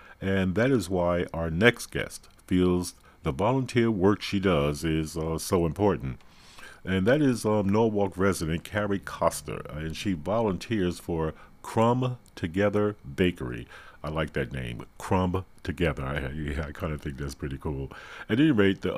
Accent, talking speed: American, 160 wpm